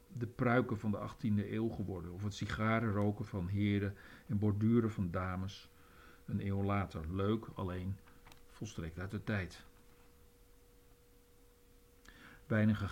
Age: 50-69